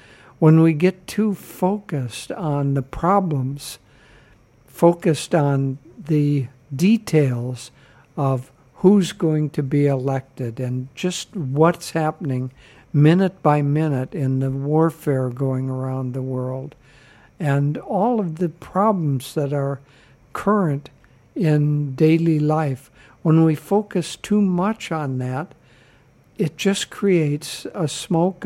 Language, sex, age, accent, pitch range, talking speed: English, male, 60-79, American, 135-170 Hz, 115 wpm